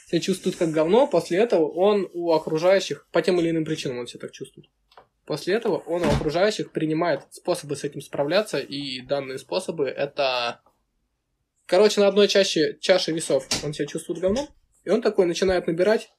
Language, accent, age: Russian, native, 20-39